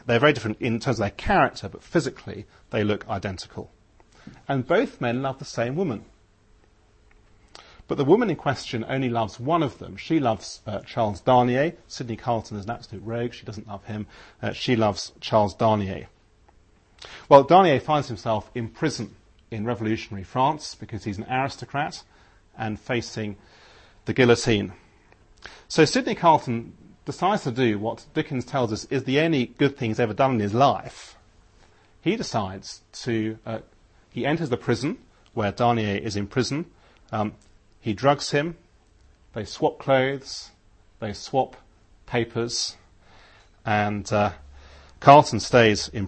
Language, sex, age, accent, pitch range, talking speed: English, male, 40-59, British, 100-125 Hz, 150 wpm